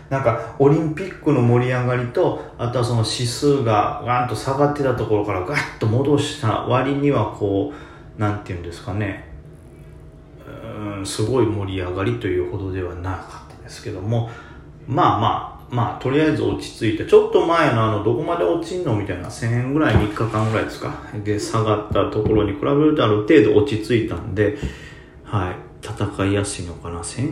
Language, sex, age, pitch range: Japanese, male, 40-59, 105-140 Hz